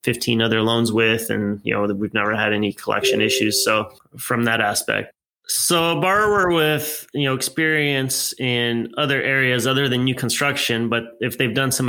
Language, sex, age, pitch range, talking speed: English, male, 20-39, 115-130 Hz, 180 wpm